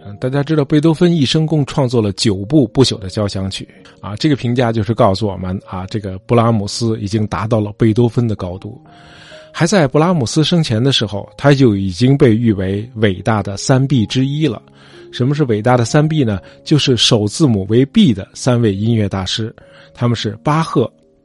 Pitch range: 105-150 Hz